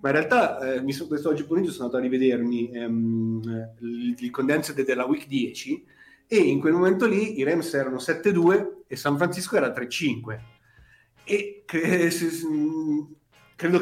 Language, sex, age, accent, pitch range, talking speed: Italian, male, 40-59, native, 125-160 Hz, 150 wpm